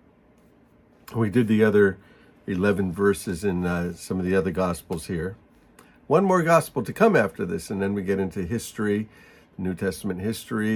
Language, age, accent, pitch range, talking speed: English, 60-79, American, 95-145 Hz, 165 wpm